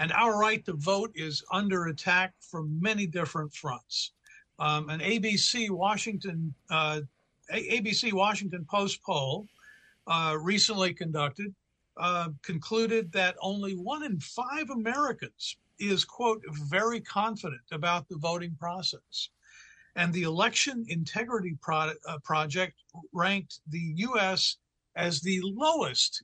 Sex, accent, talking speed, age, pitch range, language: male, American, 125 wpm, 50-69, 160-200 Hz, English